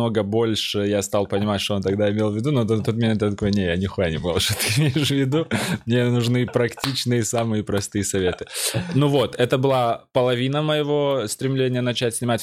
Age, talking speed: 20-39, 190 wpm